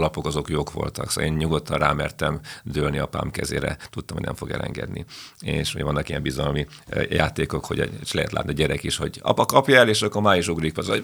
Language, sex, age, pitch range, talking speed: Hungarian, male, 40-59, 80-95 Hz, 210 wpm